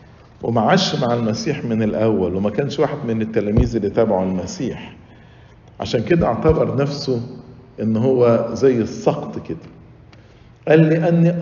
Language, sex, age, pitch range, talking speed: English, male, 50-69, 110-165 Hz, 130 wpm